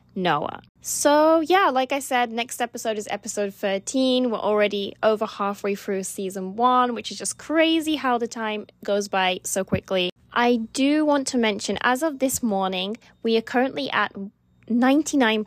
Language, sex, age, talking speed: English, female, 10-29, 165 wpm